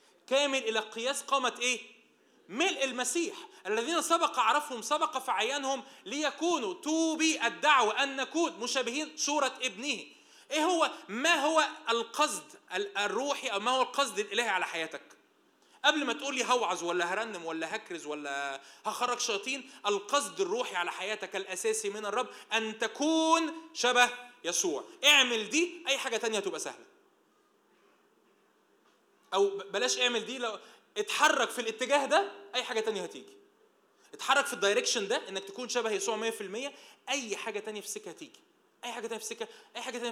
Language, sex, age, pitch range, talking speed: Arabic, male, 20-39, 220-335 Hz, 145 wpm